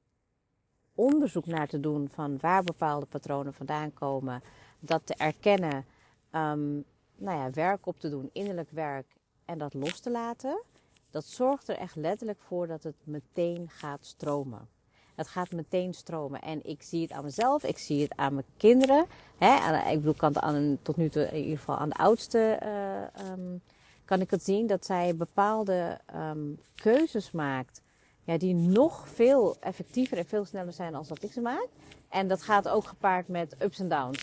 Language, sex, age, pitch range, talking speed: Dutch, female, 40-59, 150-210 Hz, 165 wpm